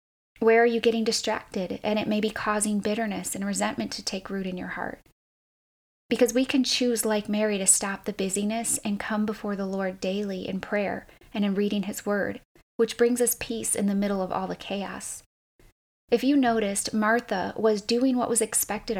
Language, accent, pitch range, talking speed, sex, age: English, American, 200-230 Hz, 195 wpm, female, 20-39